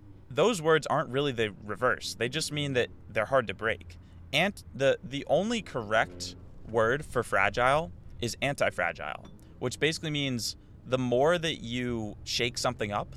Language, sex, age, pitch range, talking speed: English, male, 20-39, 100-130 Hz, 155 wpm